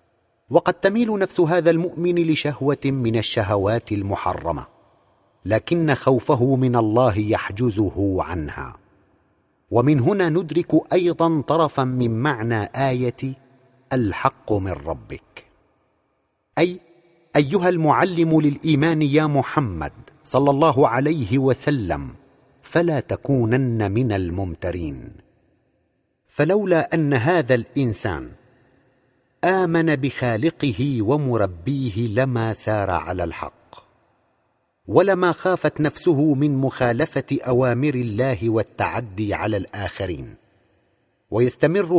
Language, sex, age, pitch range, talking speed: Arabic, male, 50-69, 110-155 Hz, 90 wpm